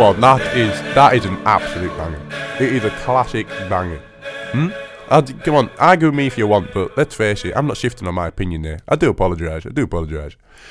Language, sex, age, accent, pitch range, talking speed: English, male, 20-39, British, 100-140 Hz, 215 wpm